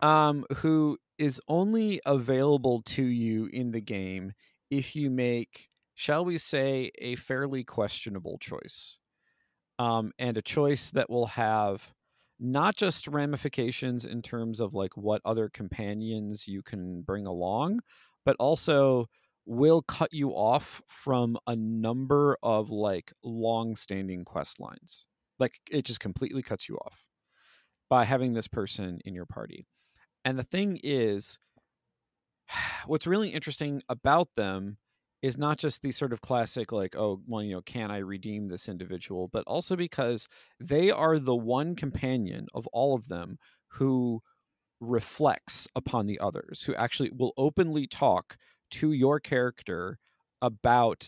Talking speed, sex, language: 140 wpm, male, English